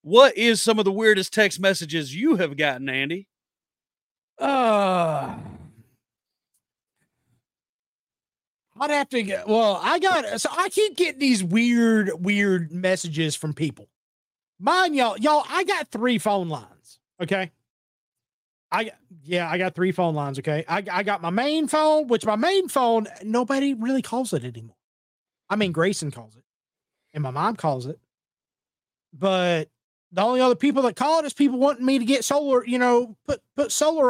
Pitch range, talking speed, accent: 170-275 Hz, 160 wpm, American